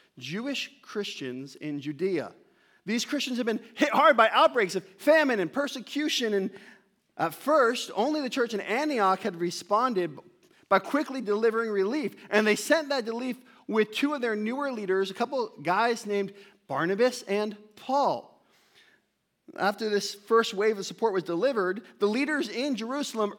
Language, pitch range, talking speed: English, 195-260 Hz, 155 wpm